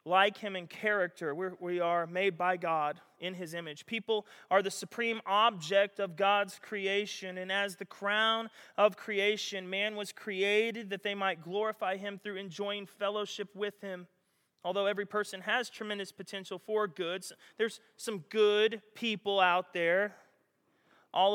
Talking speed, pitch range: 155 wpm, 160-200 Hz